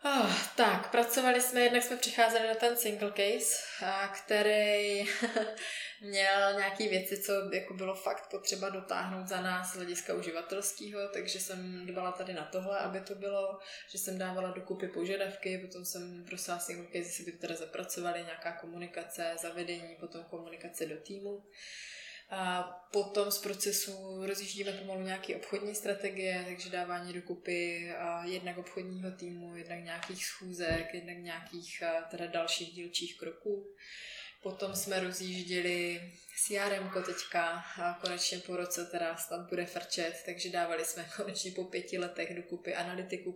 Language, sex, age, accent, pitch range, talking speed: Czech, female, 20-39, native, 175-195 Hz, 145 wpm